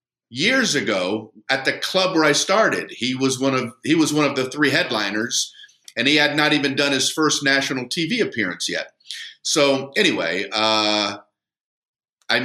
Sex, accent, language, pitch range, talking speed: male, American, English, 115-145 Hz, 170 wpm